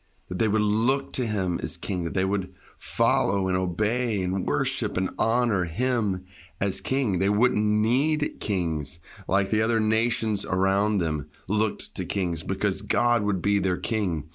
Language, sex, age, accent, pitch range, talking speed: English, male, 30-49, American, 90-110 Hz, 165 wpm